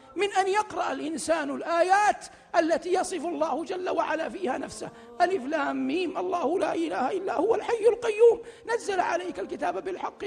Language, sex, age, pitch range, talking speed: Arabic, male, 50-69, 335-405 Hz, 150 wpm